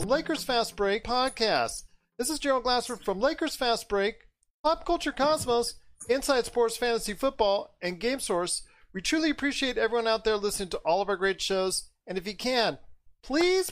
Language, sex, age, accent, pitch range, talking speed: English, male, 40-59, American, 180-235 Hz, 175 wpm